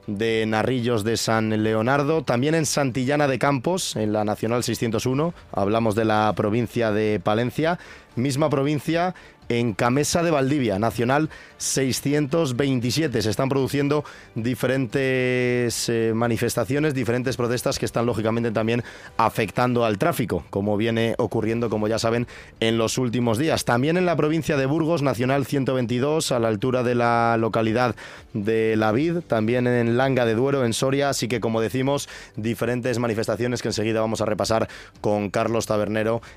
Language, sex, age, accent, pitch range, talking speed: Spanish, male, 30-49, Spanish, 110-135 Hz, 150 wpm